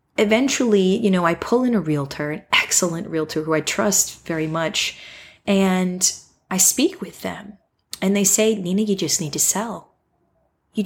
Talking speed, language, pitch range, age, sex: 170 wpm, English, 170-220 Hz, 20-39, female